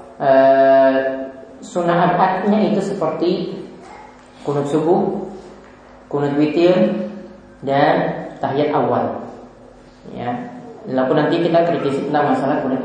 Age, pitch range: 20-39, 135-185 Hz